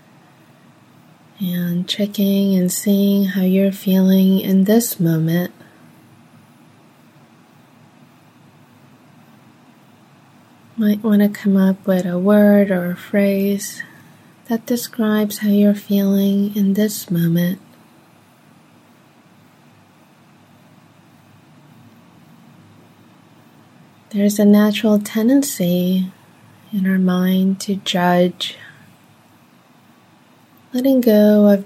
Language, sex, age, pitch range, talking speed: English, female, 20-39, 180-205 Hz, 75 wpm